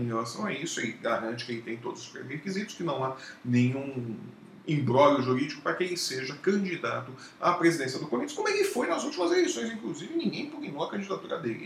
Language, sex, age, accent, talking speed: Portuguese, male, 40-59, Brazilian, 200 wpm